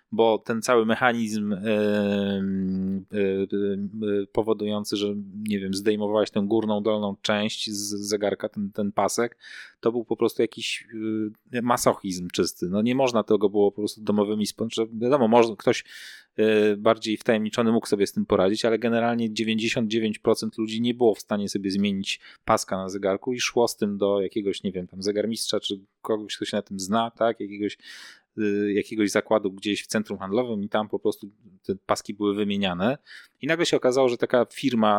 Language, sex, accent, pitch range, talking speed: Polish, male, native, 100-115 Hz, 180 wpm